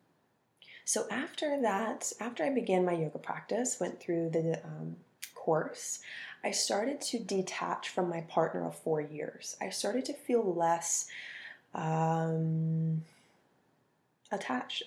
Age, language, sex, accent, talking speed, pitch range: 20-39, English, female, American, 125 wpm, 160-190 Hz